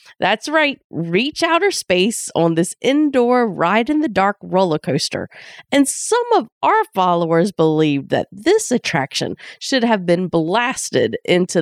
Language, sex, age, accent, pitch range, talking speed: English, female, 30-49, American, 170-275 Hz, 130 wpm